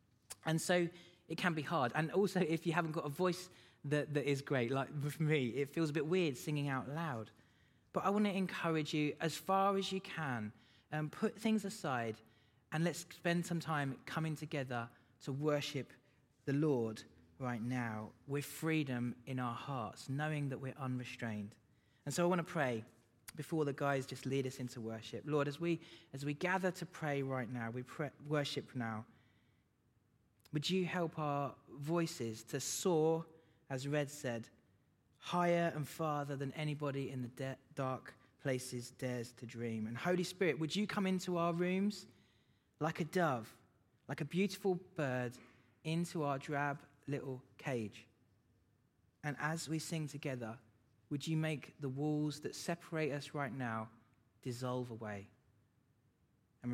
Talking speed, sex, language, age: 165 wpm, male, English, 20-39